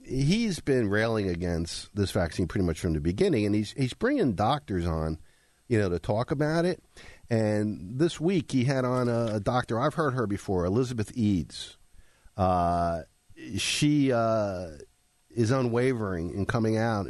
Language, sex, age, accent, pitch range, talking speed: English, male, 50-69, American, 90-120 Hz, 160 wpm